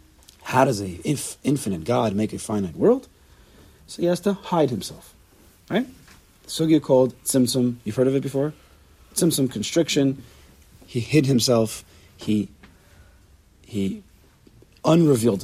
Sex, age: male, 40-59